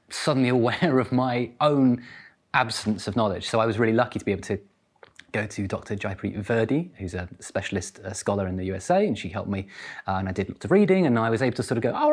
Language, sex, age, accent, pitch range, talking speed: English, male, 30-49, British, 105-125 Hz, 245 wpm